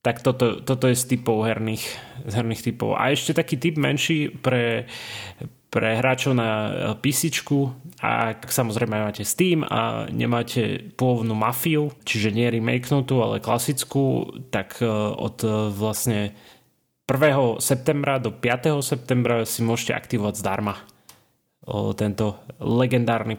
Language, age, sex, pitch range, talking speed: Slovak, 20-39, male, 110-130 Hz, 120 wpm